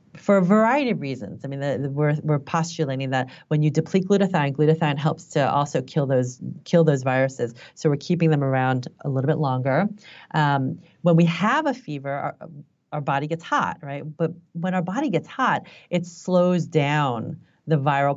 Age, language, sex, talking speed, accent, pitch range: 30-49, English, female, 190 wpm, American, 140-175 Hz